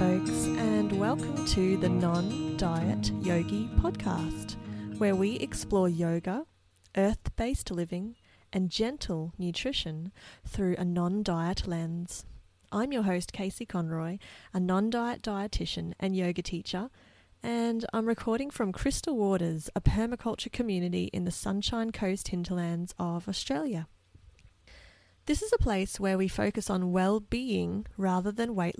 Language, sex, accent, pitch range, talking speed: English, female, Australian, 165-215 Hz, 125 wpm